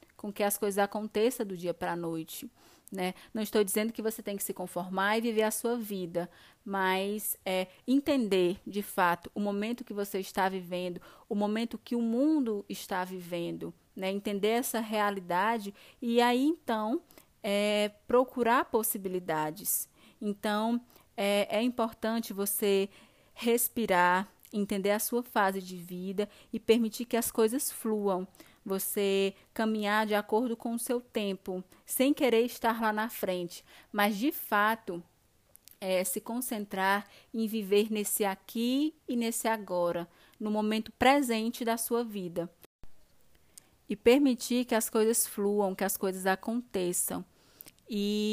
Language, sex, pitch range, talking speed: Portuguese, female, 190-230 Hz, 140 wpm